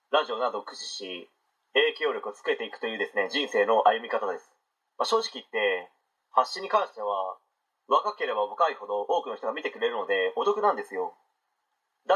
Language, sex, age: Japanese, male, 30-49